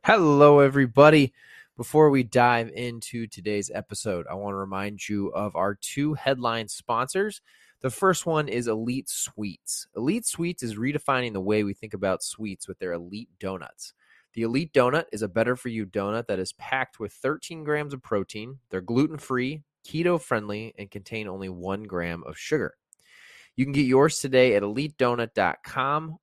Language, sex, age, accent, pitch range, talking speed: English, male, 20-39, American, 105-130 Hz, 165 wpm